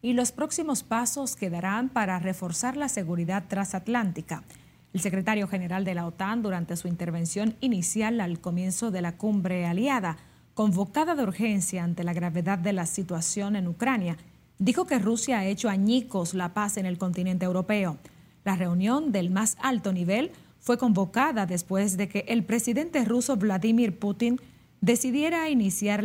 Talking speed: 155 wpm